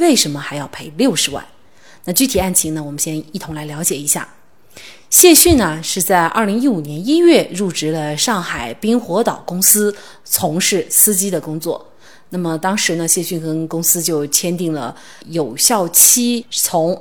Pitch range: 165-235 Hz